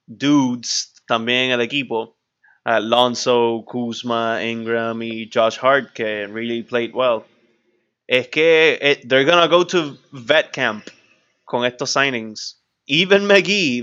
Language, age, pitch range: English, 20-39, 120-160 Hz